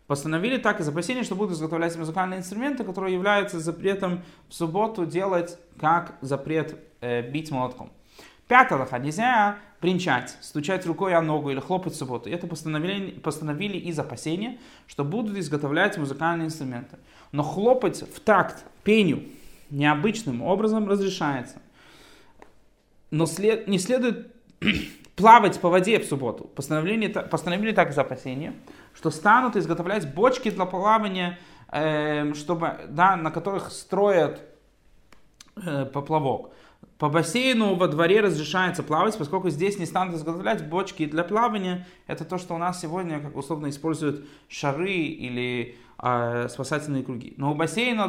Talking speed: 135 wpm